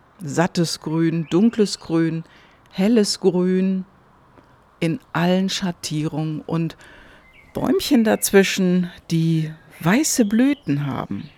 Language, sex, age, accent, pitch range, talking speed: German, female, 50-69, German, 155-215 Hz, 85 wpm